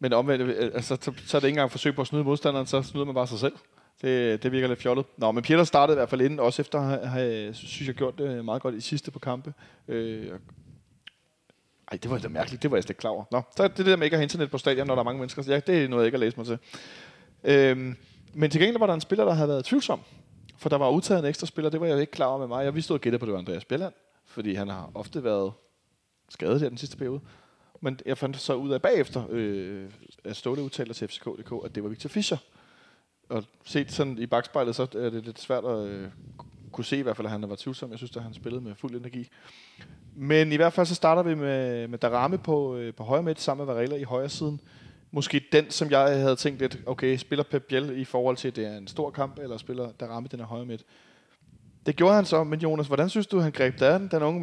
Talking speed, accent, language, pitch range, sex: 265 wpm, native, Danish, 120-150 Hz, male